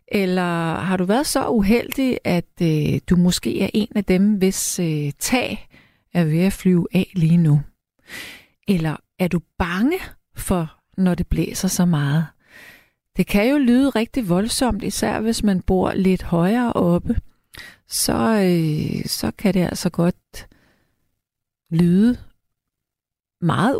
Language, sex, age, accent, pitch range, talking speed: Danish, female, 40-59, native, 175-235 Hz, 135 wpm